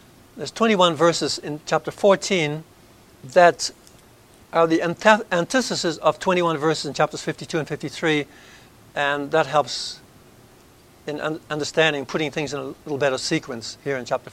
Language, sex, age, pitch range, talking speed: English, male, 60-79, 140-180 Hz, 145 wpm